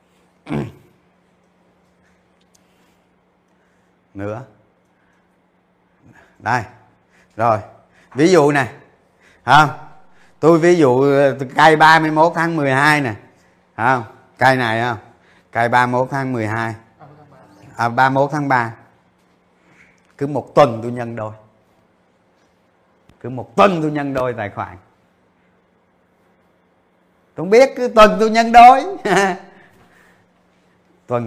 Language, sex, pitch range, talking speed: Vietnamese, male, 125-175 Hz, 105 wpm